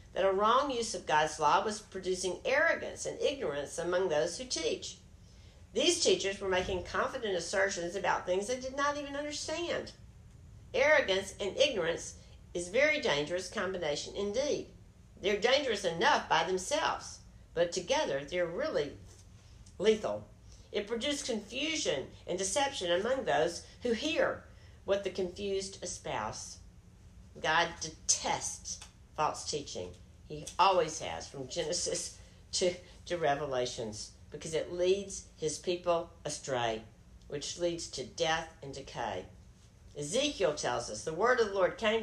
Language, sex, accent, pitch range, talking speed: English, female, American, 160-260 Hz, 135 wpm